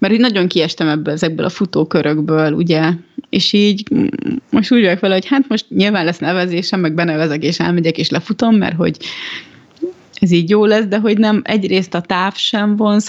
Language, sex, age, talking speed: Hungarian, female, 30-49, 190 wpm